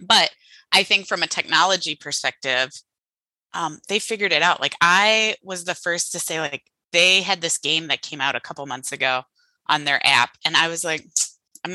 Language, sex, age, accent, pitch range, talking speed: English, female, 20-39, American, 155-205 Hz, 200 wpm